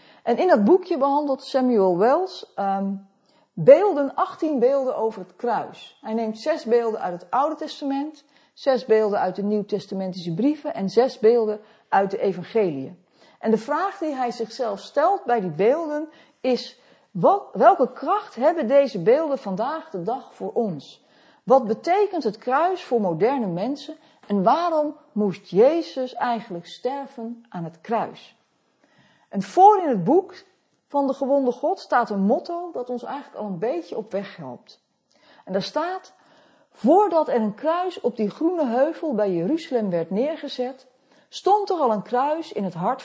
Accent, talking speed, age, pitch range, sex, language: Dutch, 165 wpm, 50-69, 215-310 Hz, female, Dutch